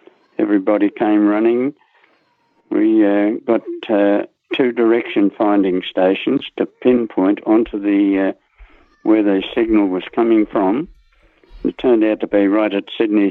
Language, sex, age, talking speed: English, male, 60-79, 135 wpm